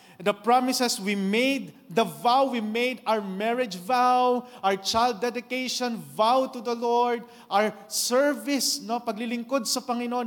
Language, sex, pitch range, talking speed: English, male, 190-245 Hz, 135 wpm